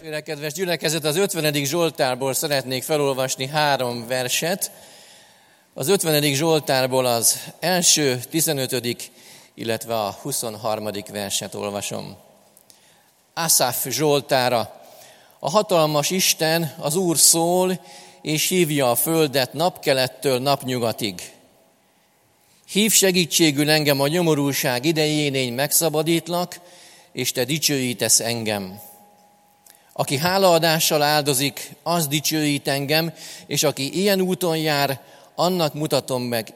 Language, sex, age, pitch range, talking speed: Hungarian, male, 40-59, 120-155 Hz, 100 wpm